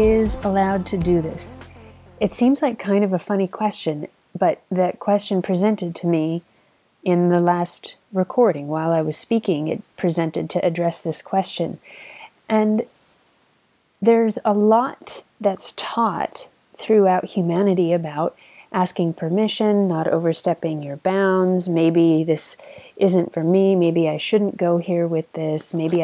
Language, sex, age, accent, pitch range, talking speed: English, female, 30-49, American, 165-200 Hz, 140 wpm